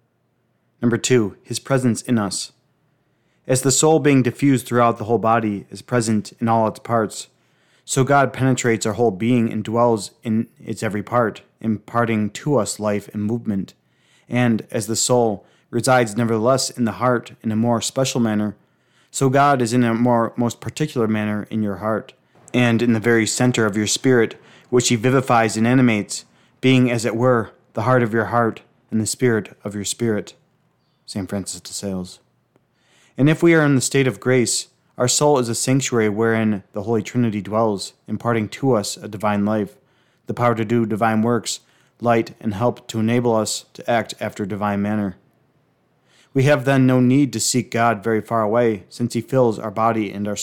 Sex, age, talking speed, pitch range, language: male, 30-49, 185 wpm, 110-125 Hz, English